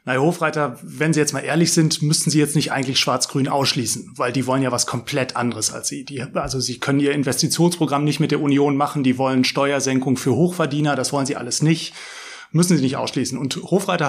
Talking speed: 215 wpm